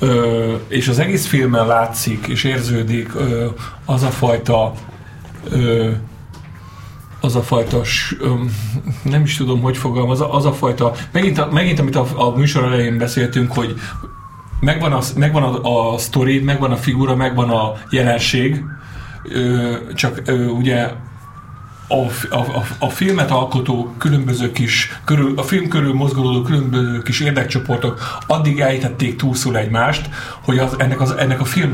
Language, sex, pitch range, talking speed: Hungarian, male, 120-145 Hz, 145 wpm